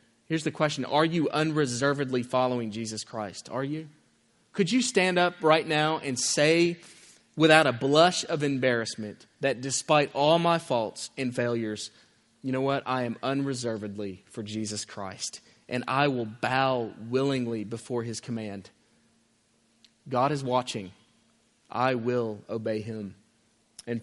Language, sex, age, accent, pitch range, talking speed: English, male, 30-49, American, 115-155 Hz, 140 wpm